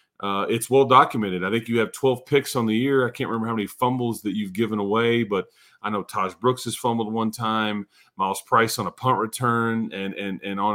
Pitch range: 105-120 Hz